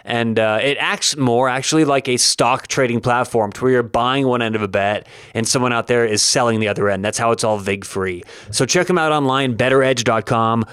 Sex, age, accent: male, 30-49, American